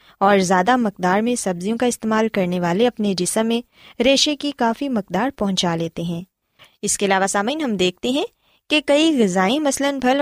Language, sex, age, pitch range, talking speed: Urdu, female, 20-39, 190-270 Hz, 180 wpm